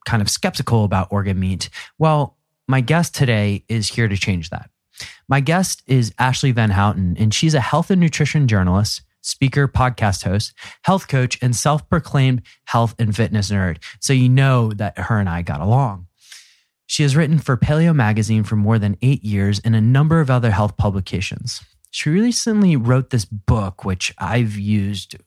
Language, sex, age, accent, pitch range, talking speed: English, male, 30-49, American, 100-135 Hz, 175 wpm